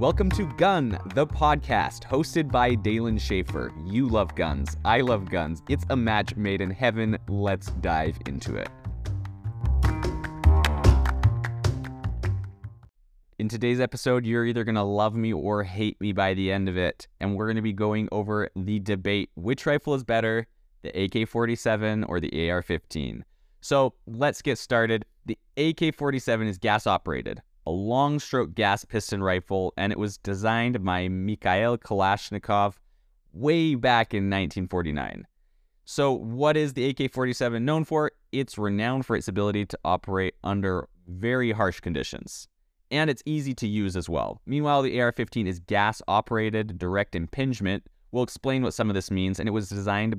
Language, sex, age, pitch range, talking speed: English, male, 20-39, 95-120 Hz, 150 wpm